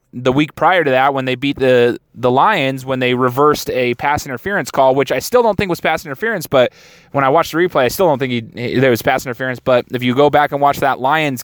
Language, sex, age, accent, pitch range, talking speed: English, male, 20-39, American, 125-160 Hz, 255 wpm